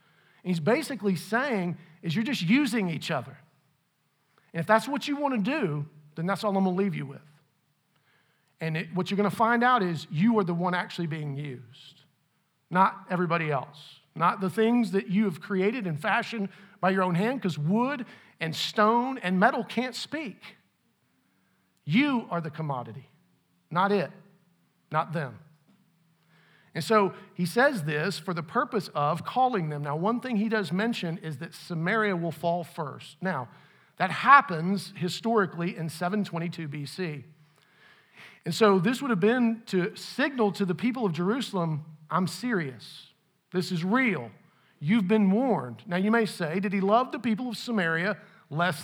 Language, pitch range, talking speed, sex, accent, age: English, 160-215 Hz, 165 wpm, male, American, 50-69